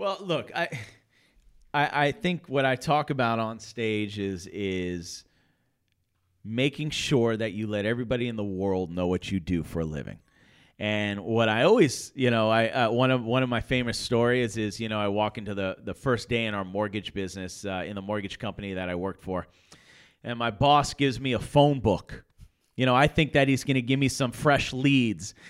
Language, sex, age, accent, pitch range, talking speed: English, male, 30-49, American, 105-140 Hz, 210 wpm